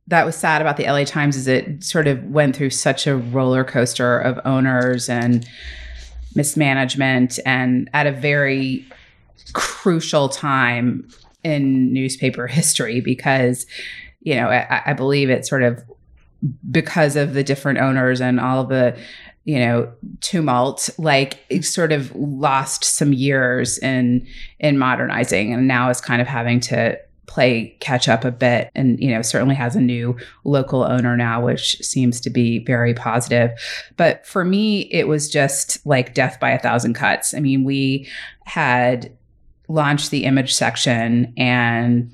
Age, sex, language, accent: 30-49, female, English, American